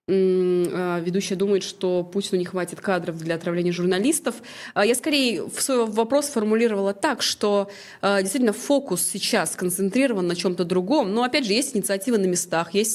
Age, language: 20-39, Russian